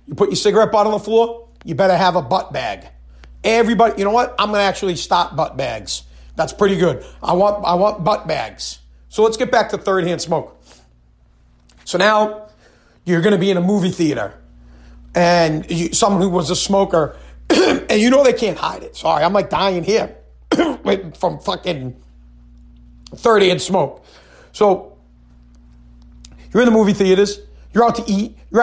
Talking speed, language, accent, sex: 180 wpm, English, American, male